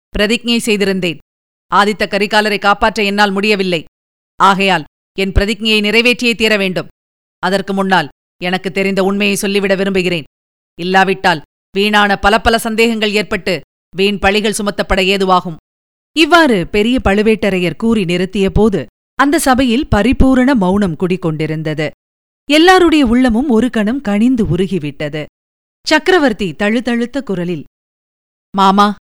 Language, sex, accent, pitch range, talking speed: Tamil, female, native, 185-225 Hz, 100 wpm